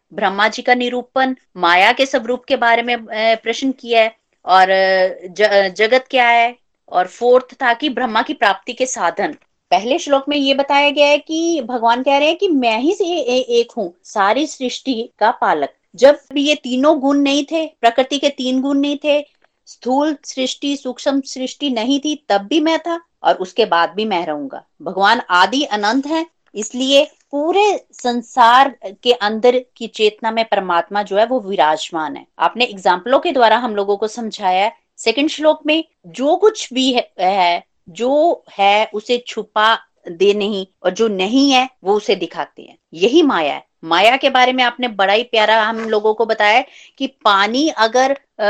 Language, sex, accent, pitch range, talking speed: Hindi, female, native, 210-280 Hz, 175 wpm